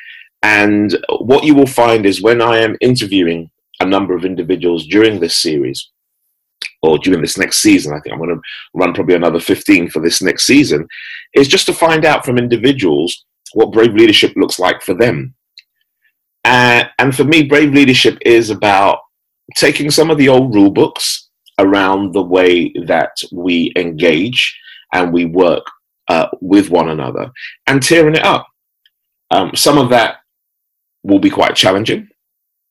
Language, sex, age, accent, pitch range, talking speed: English, male, 30-49, British, 95-155 Hz, 165 wpm